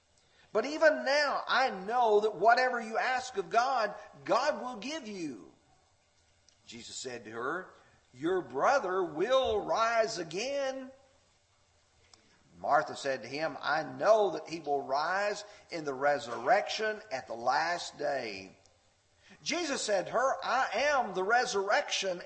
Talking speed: 130 wpm